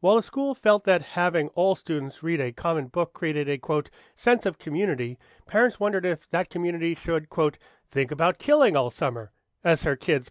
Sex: male